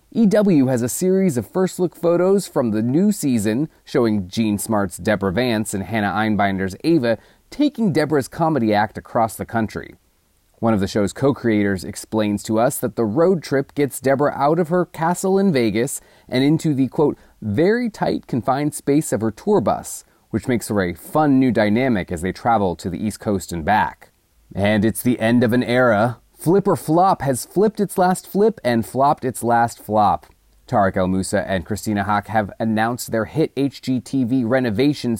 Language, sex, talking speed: English, male, 180 wpm